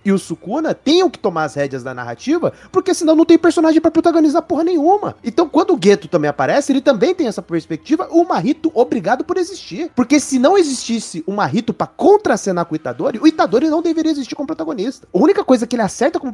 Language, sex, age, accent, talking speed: Portuguese, male, 30-49, Brazilian, 225 wpm